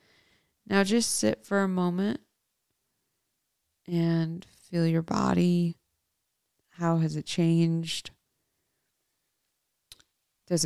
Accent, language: American, English